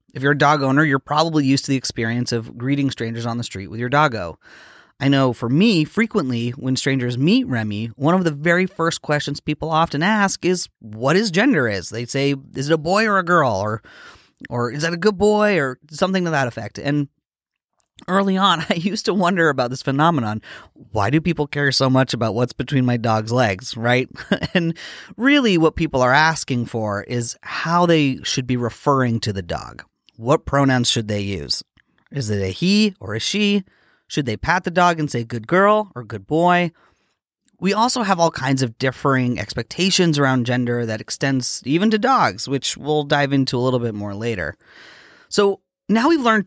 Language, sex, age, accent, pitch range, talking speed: English, male, 30-49, American, 120-175 Hz, 200 wpm